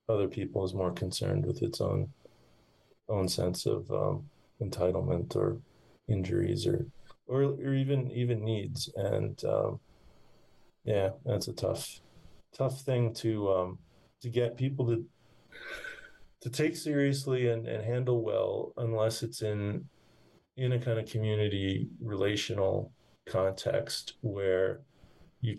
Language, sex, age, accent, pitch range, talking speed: English, male, 30-49, American, 95-125 Hz, 125 wpm